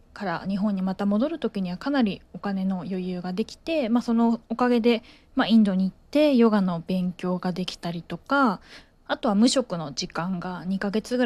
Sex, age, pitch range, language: female, 20-39, 175-215 Hz, Japanese